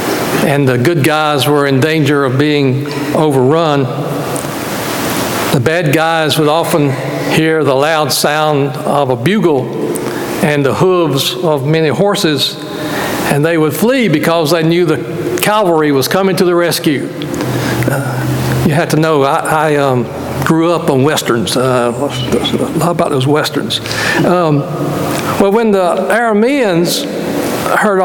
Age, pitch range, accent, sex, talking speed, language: 60-79, 145-185 Hz, American, male, 135 wpm, English